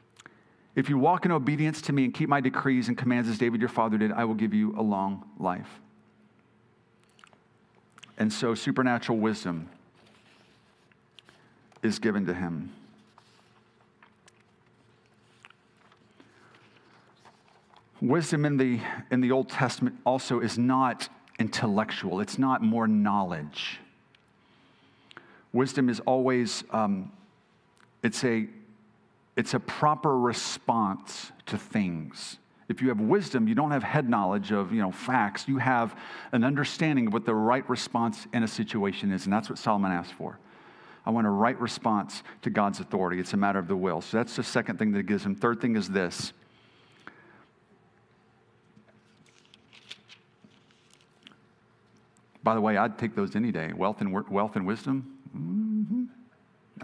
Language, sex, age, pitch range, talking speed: English, male, 50-69, 110-135 Hz, 140 wpm